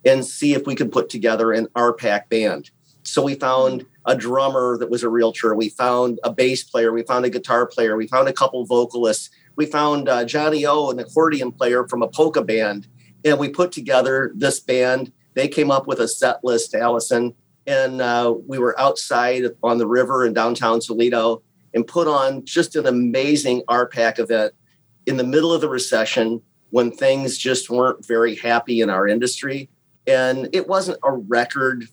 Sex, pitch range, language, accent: male, 115-135 Hz, English, American